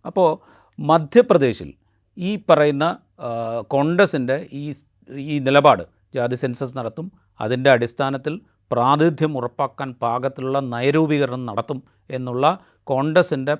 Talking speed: 90 wpm